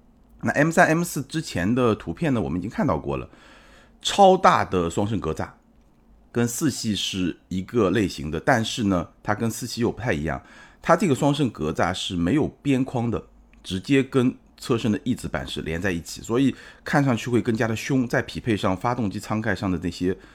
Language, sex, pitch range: Chinese, male, 90-125 Hz